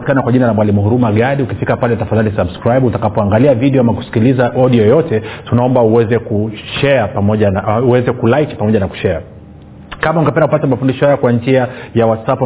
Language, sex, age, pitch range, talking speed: Swahili, male, 40-59, 110-135 Hz, 180 wpm